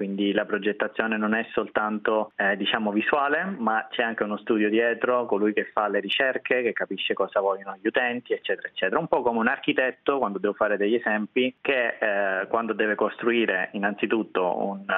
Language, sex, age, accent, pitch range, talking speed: Italian, male, 20-39, native, 105-125 Hz, 180 wpm